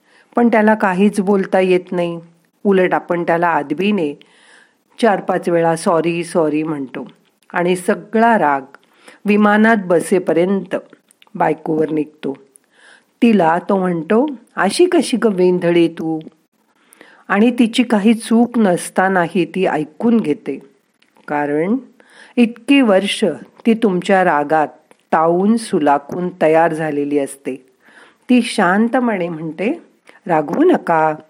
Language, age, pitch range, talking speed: Marathi, 50-69, 165-225 Hz, 100 wpm